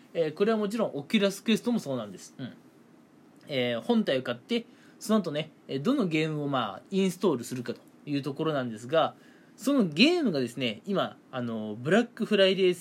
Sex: male